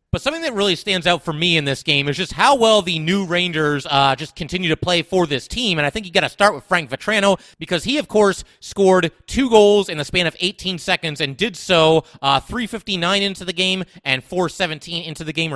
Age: 30-49